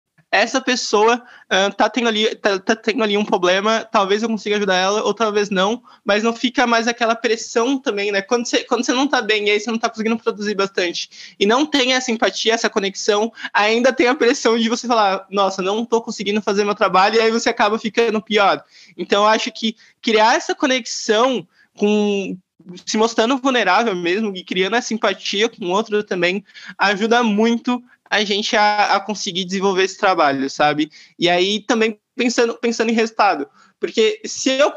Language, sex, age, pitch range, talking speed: Portuguese, male, 20-39, 200-235 Hz, 190 wpm